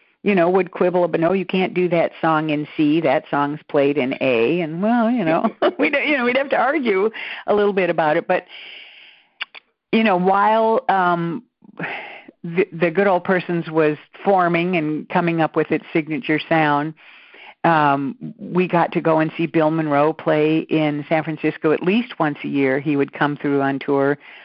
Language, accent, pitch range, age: English, American, 150-180 Hz, 50-69